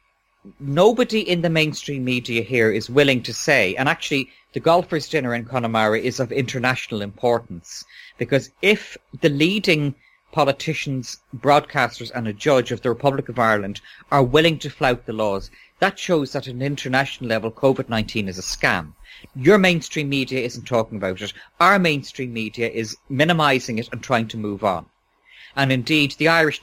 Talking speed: 170 wpm